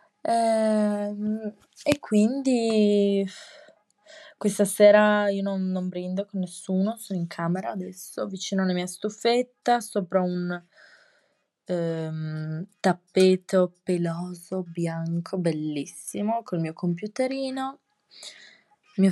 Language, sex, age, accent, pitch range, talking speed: Italian, female, 20-39, native, 180-215 Hz, 90 wpm